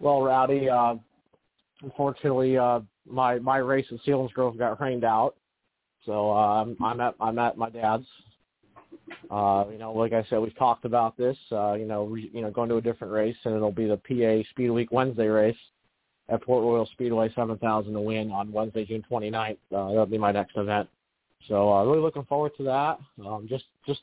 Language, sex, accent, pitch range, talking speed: English, male, American, 110-130 Hz, 205 wpm